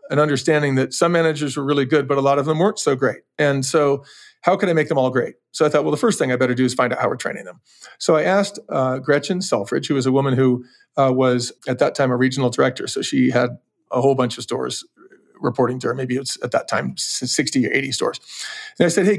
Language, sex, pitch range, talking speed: English, male, 130-160 Hz, 265 wpm